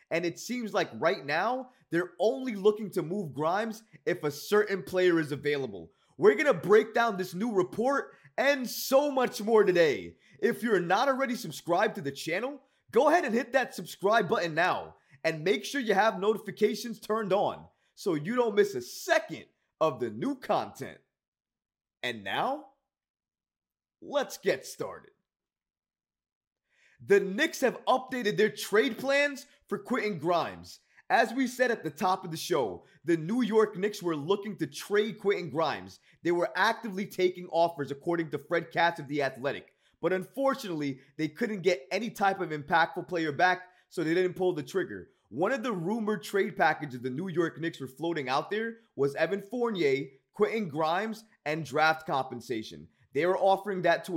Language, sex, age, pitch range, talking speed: English, male, 20-39, 165-225 Hz, 170 wpm